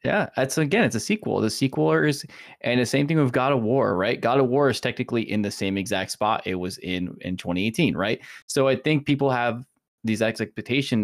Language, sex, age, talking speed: English, male, 20-39, 225 wpm